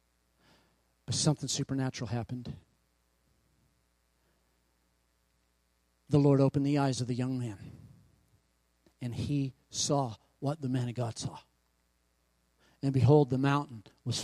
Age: 40-59